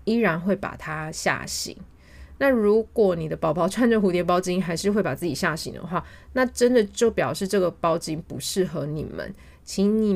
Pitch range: 150-200 Hz